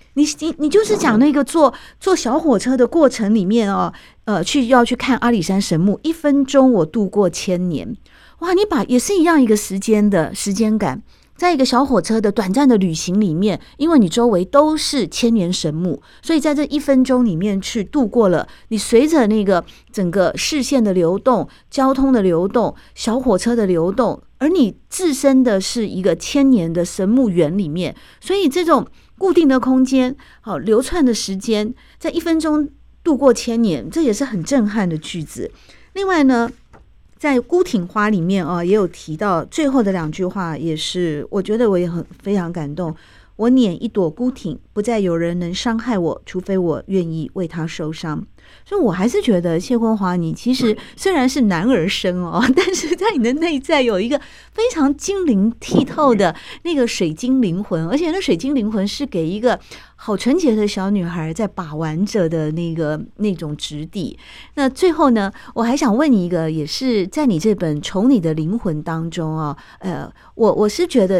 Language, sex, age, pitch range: Chinese, female, 50-69, 185-270 Hz